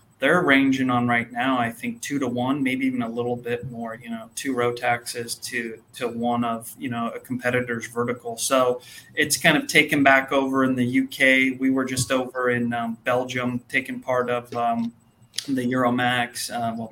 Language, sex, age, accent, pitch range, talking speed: English, male, 20-39, American, 120-130 Hz, 190 wpm